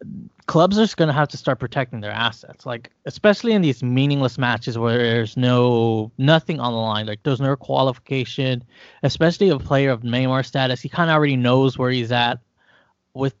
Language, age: English, 20-39